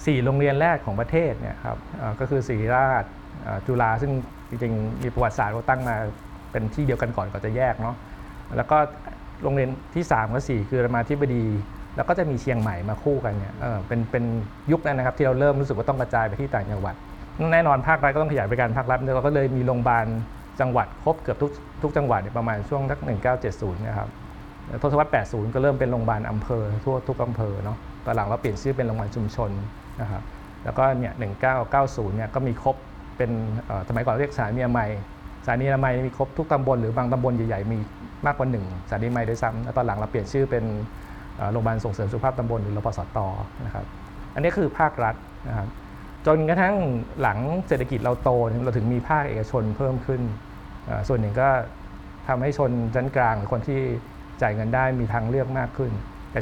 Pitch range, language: 110-135 Hz, Thai